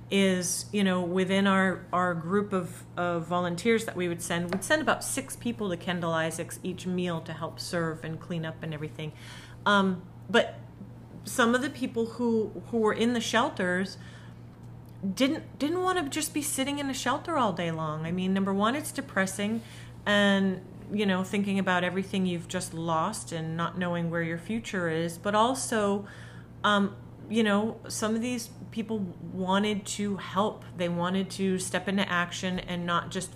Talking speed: 180 wpm